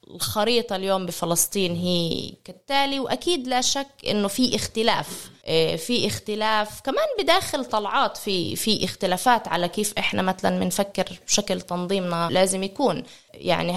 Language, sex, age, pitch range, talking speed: Arabic, female, 20-39, 195-250 Hz, 125 wpm